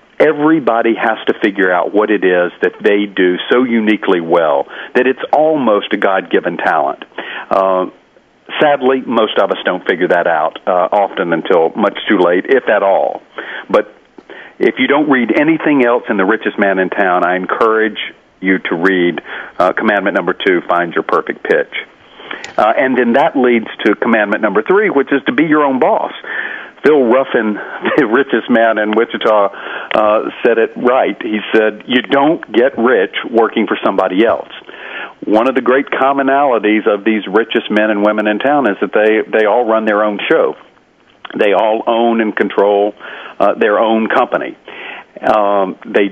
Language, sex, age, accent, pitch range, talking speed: English, male, 50-69, American, 105-130 Hz, 175 wpm